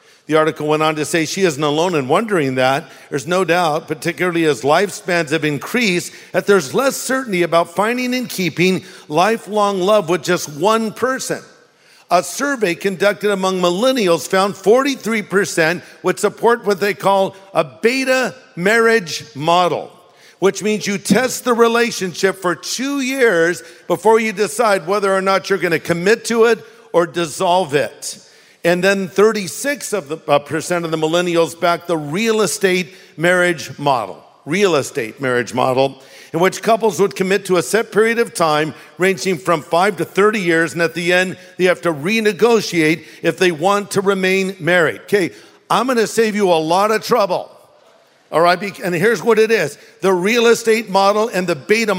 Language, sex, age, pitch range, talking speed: English, male, 50-69, 170-210 Hz, 165 wpm